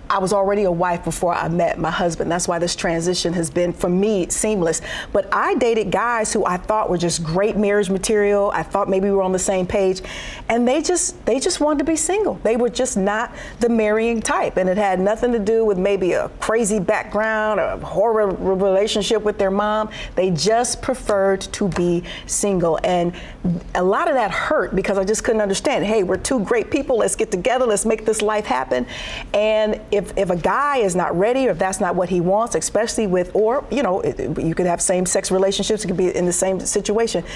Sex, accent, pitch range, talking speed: female, American, 180-215 Hz, 220 wpm